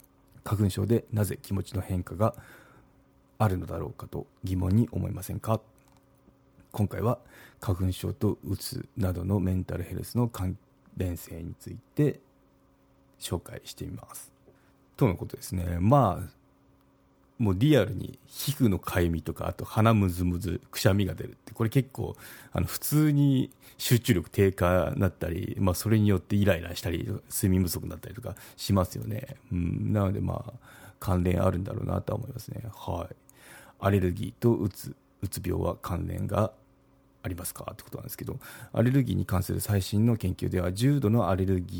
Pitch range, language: 90-120 Hz, Japanese